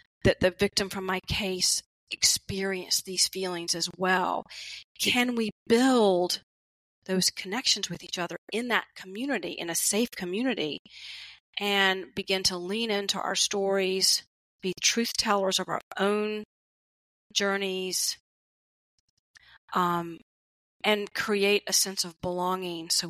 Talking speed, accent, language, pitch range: 120 wpm, American, English, 175-200 Hz